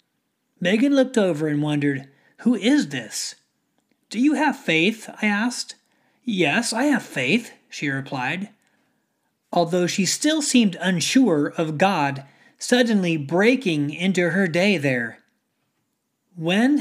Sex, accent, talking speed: male, American, 120 wpm